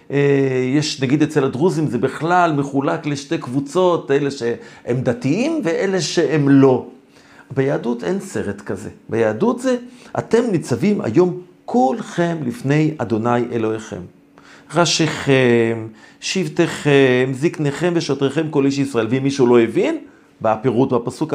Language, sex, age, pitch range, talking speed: Hebrew, male, 50-69, 140-185 Hz, 120 wpm